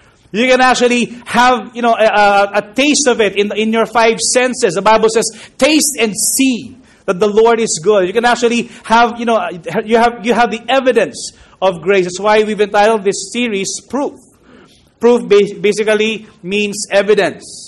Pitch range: 170-220 Hz